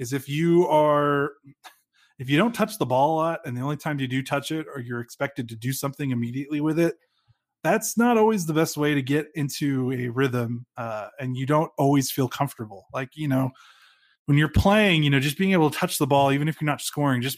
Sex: male